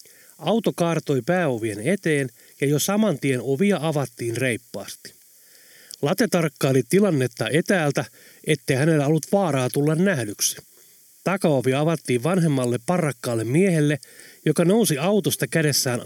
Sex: male